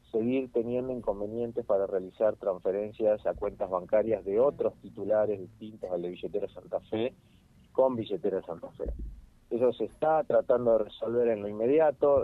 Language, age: Spanish, 40-59